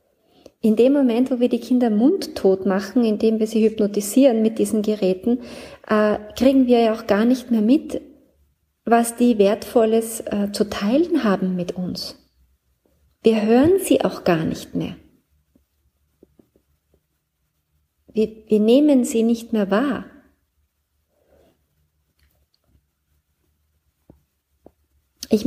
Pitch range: 175-225 Hz